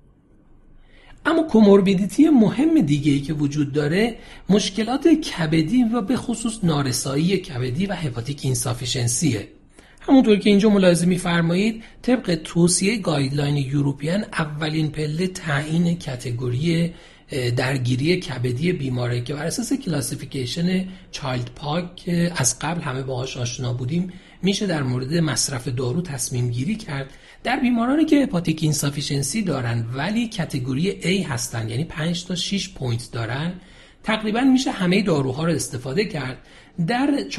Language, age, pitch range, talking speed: Persian, 40-59, 135-190 Hz, 125 wpm